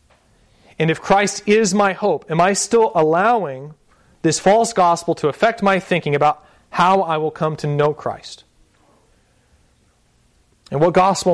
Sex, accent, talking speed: male, American, 150 wpm